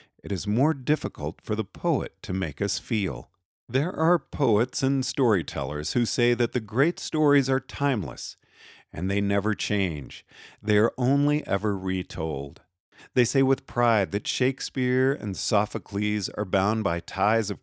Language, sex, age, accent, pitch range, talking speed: English, male, 50-69, American, 95-125 Hz, 155 wpm